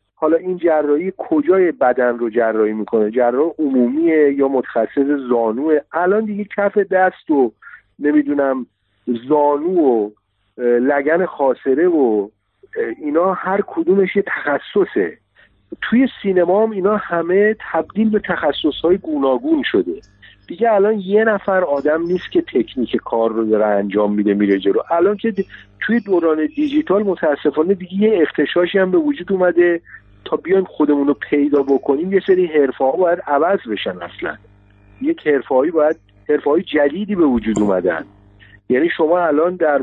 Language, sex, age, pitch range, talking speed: Persian, male, 50-69, 125-190 Hz, 135 wpm